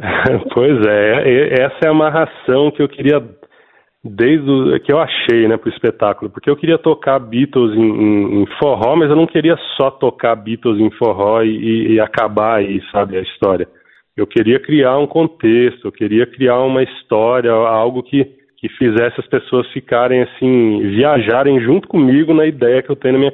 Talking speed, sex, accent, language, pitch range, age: 180 wpm, male, Brazilian, Portuguese, 115-145 Hz, 20-39